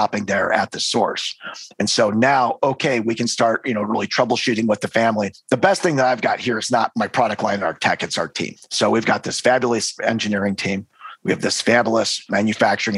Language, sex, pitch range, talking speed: English, male, 110-135 Hz, 215 wpm